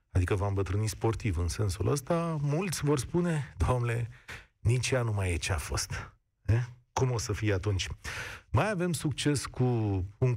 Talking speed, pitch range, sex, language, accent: 180 wpm, 100-140 Hz, male, Romanian, native